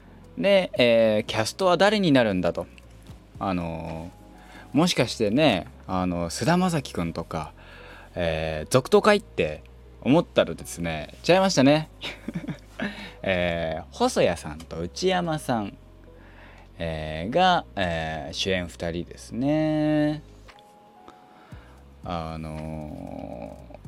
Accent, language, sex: native, Japanese, male